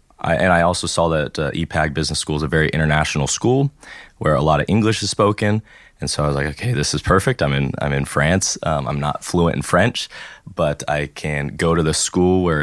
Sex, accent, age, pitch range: male, American, 20-39, 75-85 Hz